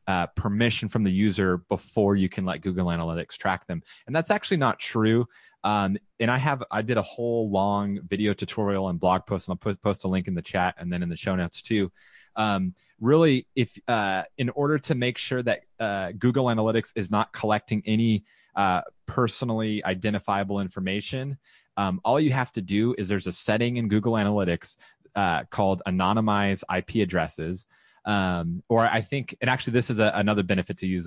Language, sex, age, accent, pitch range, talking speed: English, male, 30-49, American, 95-120 Hz, 190 wpm